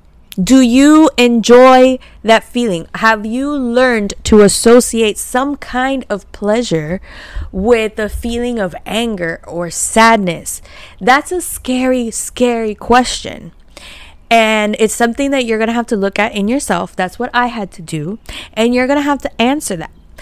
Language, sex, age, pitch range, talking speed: English, female, 20-39, 195-245 Hz, 150 wpm